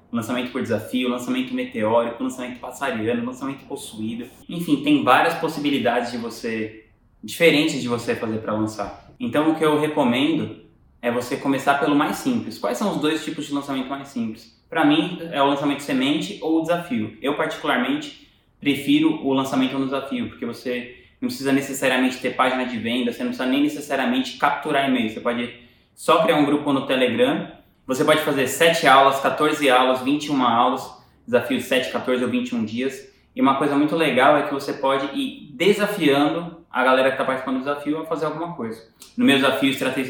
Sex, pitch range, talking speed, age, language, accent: male, 125-160 Hz, 185 wpm, 20-39, Portuguese, Brazilian